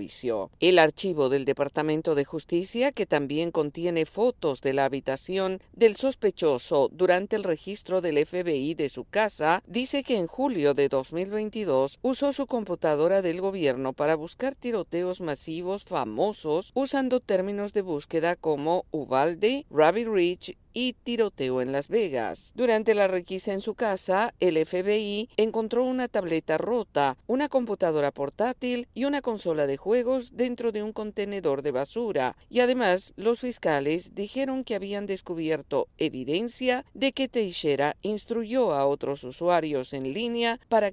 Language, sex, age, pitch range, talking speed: Spanish, female, 50-69, 155-230 Hz, 140 wpm